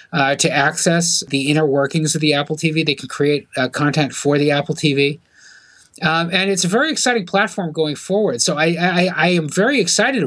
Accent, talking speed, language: American, 200 wpm, English